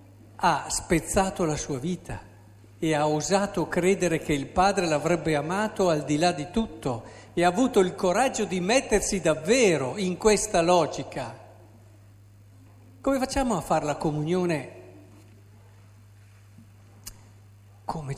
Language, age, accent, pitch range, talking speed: Italian, 50-69, native, 105-170 Hz, 120 wpm